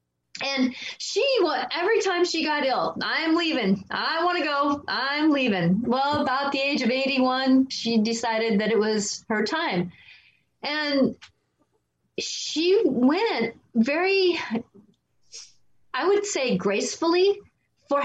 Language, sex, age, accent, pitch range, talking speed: English, female, 30-49, American, 230-305 Hz, 125 wpm